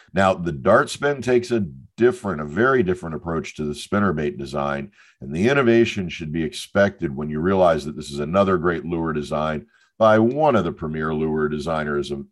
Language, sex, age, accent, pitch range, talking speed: English, male, 50-69, American, 75-105 Hz, 190 wpm